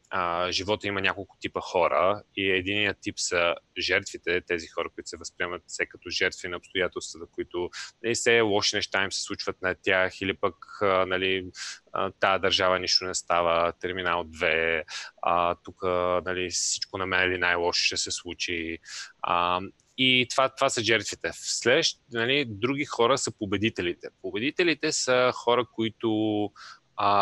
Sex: male